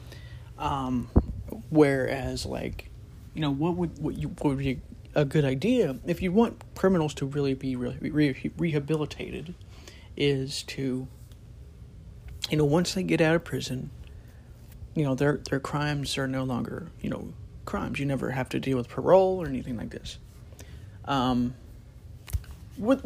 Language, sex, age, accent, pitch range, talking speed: English, male, 30-49, American, 115-155 Hz, 145 wpm